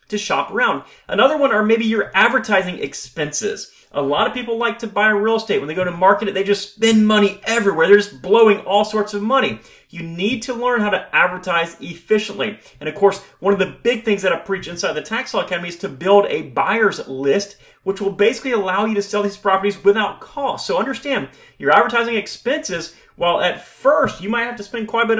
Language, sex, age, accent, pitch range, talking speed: English, male, 30-49, American, 190-245 Hz, 225 wpm